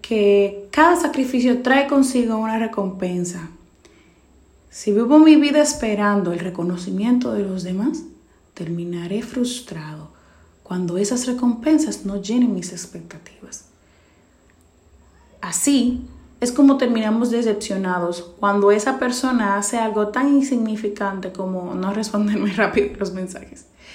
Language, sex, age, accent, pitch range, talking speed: Spanish, female, 30-49, Venezuelan, 185-250 Hz, 110 wpm